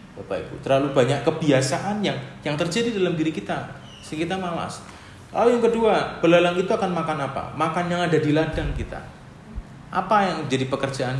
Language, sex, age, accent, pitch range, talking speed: Indonesian, male, 30-49, native, 120-175 Hz, 175 wpm